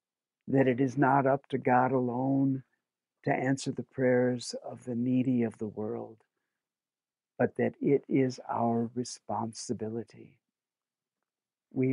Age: 60-79